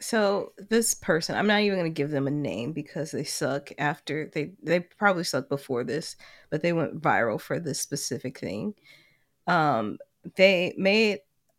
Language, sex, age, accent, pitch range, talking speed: English, female, 20-39, American, 150-200 Hz, 170 wpm